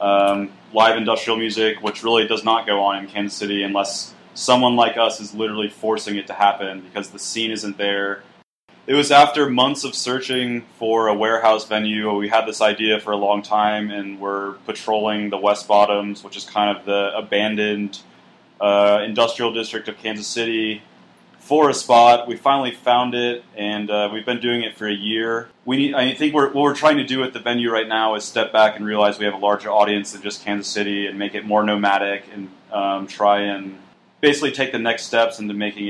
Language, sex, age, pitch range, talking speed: English, male, 20-39, 100-115 Hz, 205 wpm